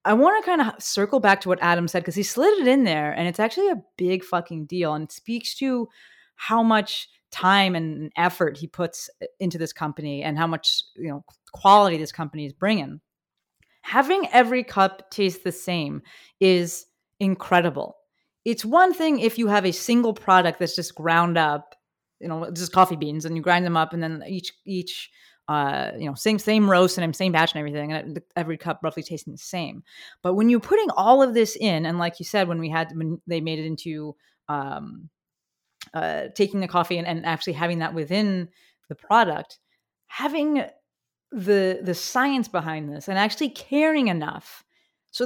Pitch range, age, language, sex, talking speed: 165-225 Hz, 30-49, English, female, 195 wpm